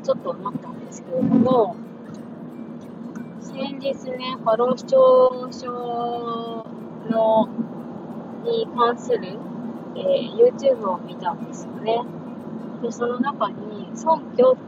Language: Japanese